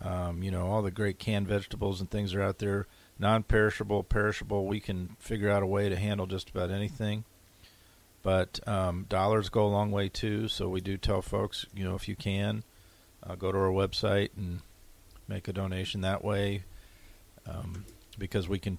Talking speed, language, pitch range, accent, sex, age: 190 wpm, English, 95-105 Hz, American, male, 40-59